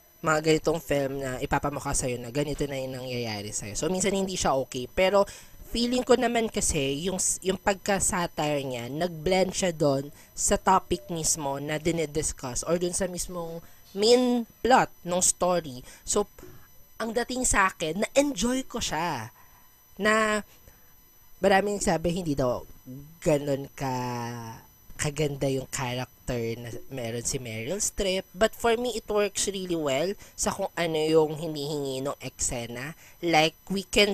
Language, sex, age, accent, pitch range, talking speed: Filipino, female, 20-39, native, 135-190 Hz, 140 wpm